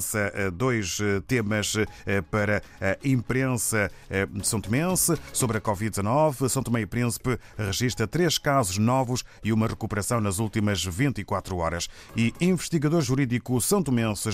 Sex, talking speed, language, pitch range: male, 130 wpm, Portuguese, 105-135 Hz